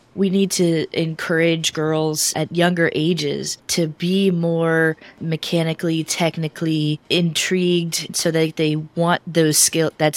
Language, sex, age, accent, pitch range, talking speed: English, female, 20-39, American, 150-170 Hz, 125 wpm